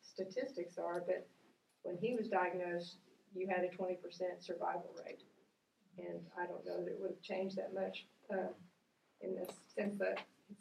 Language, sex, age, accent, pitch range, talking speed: English, female, 40-59, American, 175-195 Hz, 165 wpm